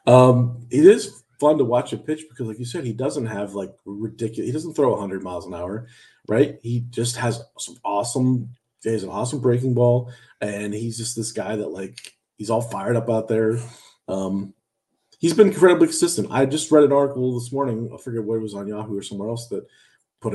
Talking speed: 215 wpm